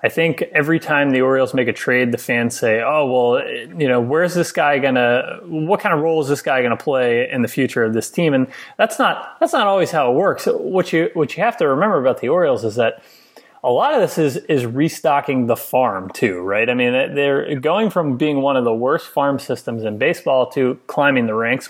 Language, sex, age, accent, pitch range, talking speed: English, male, 30-49, American, 125-165 Hz, 235 wpm